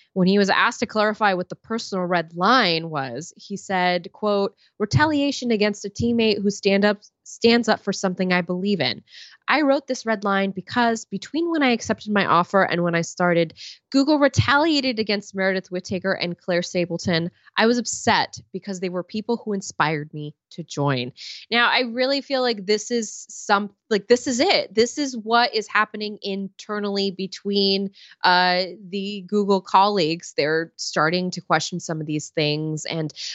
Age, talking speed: 20-39, 175 wpm